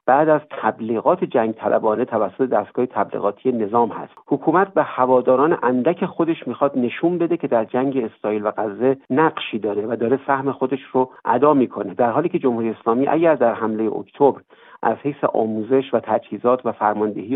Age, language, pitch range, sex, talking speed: 50-69, Persian, 115-145 Hz, male, 170 wpm